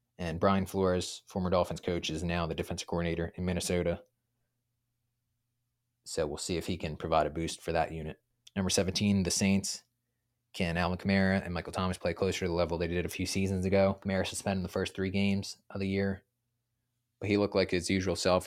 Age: 20-39